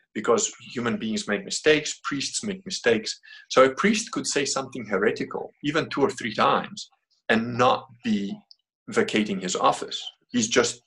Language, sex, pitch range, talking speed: English, male, 135-215 Hz, 155 wpm